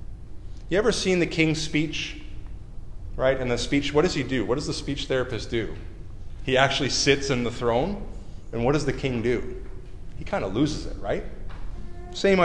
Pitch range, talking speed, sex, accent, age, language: 115-170 Hz, 190 wpm, male, American, 30-49, English